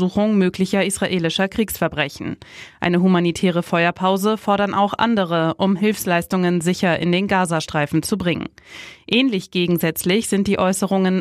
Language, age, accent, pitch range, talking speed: German, 20-39, German, 180-205 Hz, 120 wpm